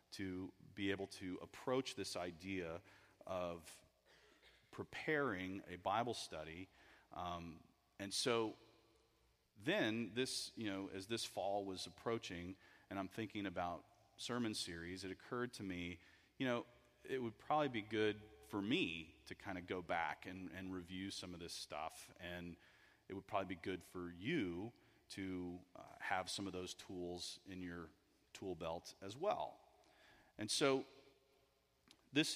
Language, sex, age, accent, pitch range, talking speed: English, male, 30-49, American, 95-115 Hz, 145 wpm